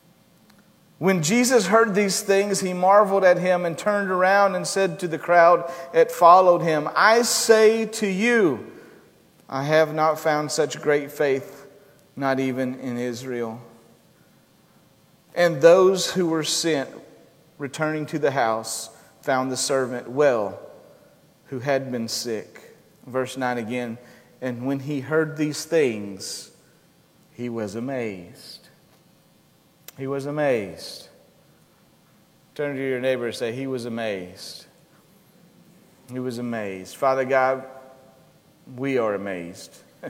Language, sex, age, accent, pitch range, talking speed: English, male, 40-59, American, 125-175 Hz, 125 wpm